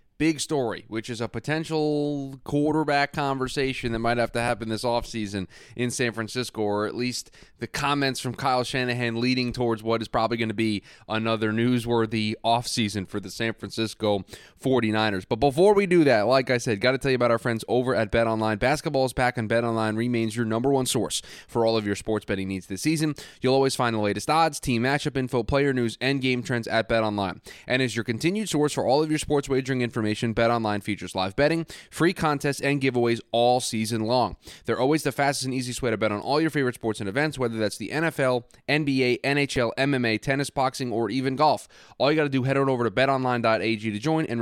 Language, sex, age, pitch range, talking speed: English, male, 20-39, 115-145 Hz, 220 wpm